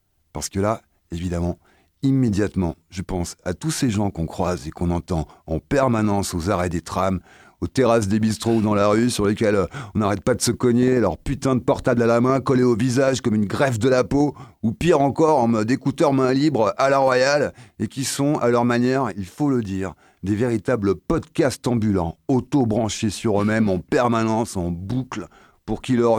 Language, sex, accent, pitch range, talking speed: French, male, French, 110-175 Hz, 205 wpm